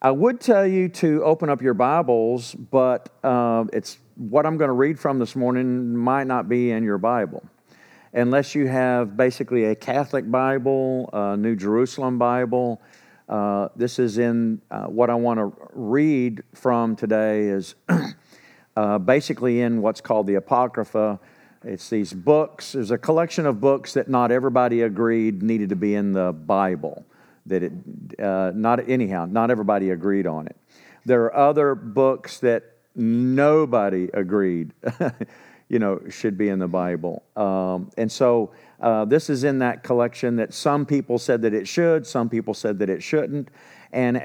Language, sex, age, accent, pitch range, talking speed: English, male, 50-69, American, 110-135 Hz, 165 wpm